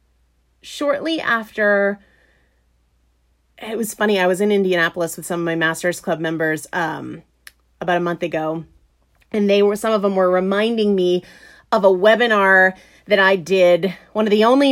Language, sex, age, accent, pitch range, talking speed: English, female, 30-49, American, 160-215 Hz, 165 wpm